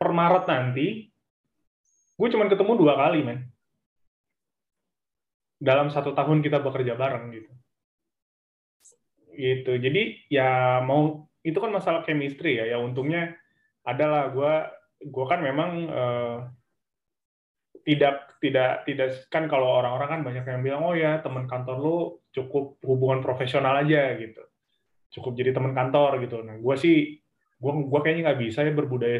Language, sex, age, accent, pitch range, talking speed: Indonesian, male, 20-39, native, 125-155 Hz, 140 wpm